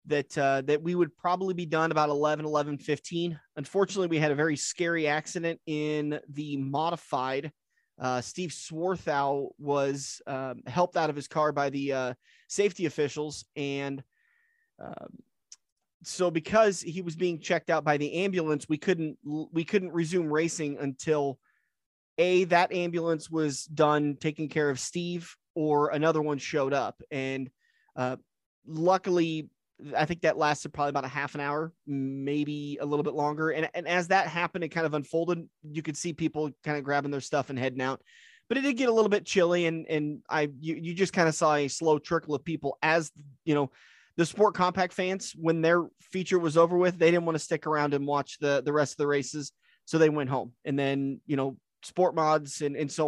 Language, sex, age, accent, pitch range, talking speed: English, male, 30-49, American, 145-170 Hz, 195 wpm